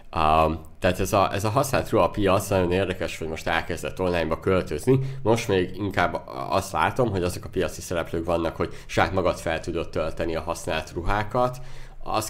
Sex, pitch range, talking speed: male, 80-95 Hz, 175 wpm